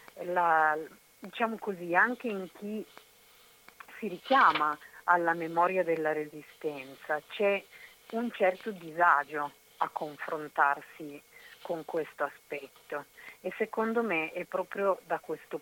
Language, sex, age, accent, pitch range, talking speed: Italian, female, 50-69, native, 150-190 Hz, 105 wpm